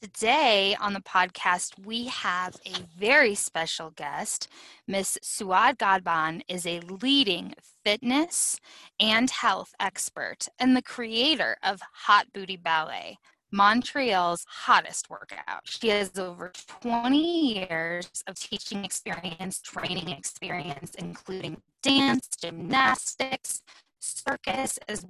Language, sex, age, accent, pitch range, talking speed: English, female, 10-29, American, 185-240 Hz, 110 wpm